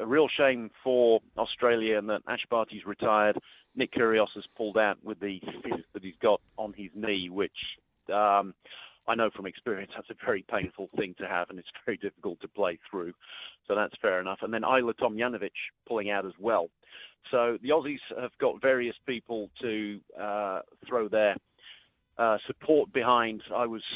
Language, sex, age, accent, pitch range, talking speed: English, male, 40-59, British, 105-120 Hz, 180 wpm